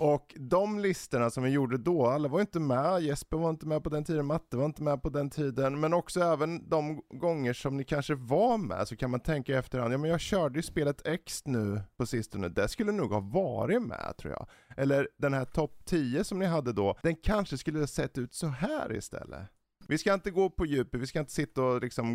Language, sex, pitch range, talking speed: Swedish, male, 105-155 Hz, 240 wpm